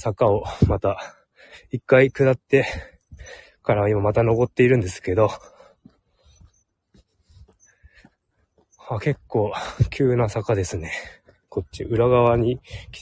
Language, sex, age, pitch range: Japanese, male, 20-39, 95-130 Hz